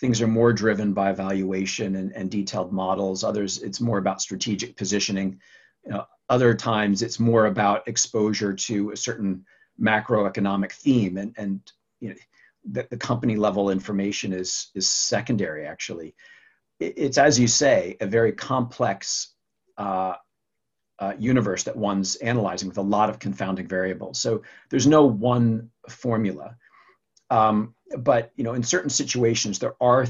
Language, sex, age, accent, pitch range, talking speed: English, male, 40-59, American, 100-120 Hz, 140 wpm